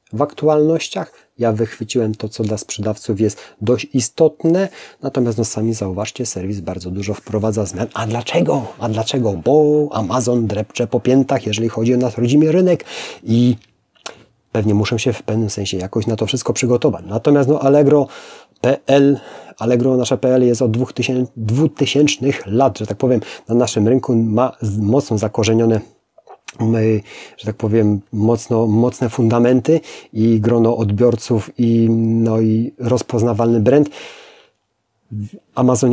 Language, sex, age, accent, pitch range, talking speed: Polish, male, 30-49, native, 110-130 Hz, 140 wpm